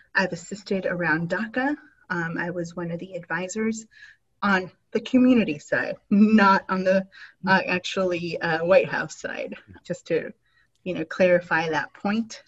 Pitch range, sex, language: 170-210 Hz, female, English